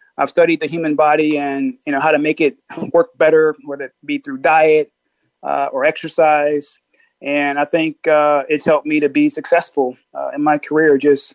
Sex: male